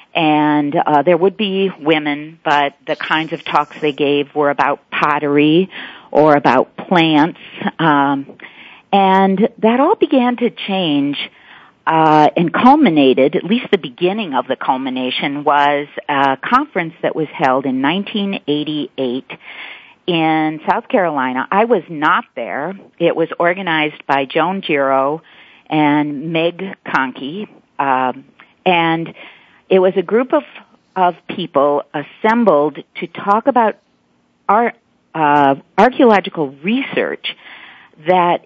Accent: American